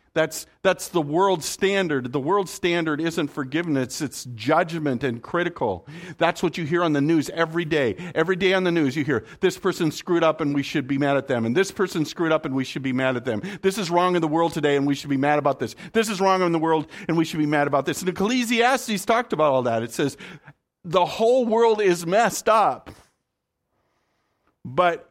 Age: 50-69